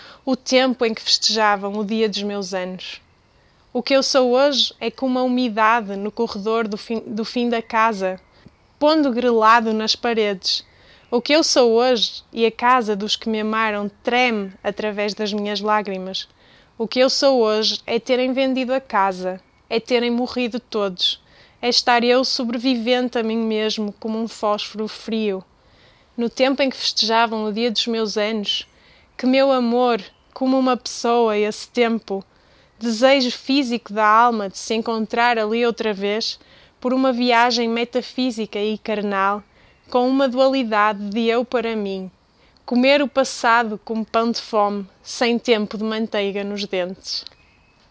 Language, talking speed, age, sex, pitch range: Portuguese, 160 wpm, 20-39, female, 210-245 Hz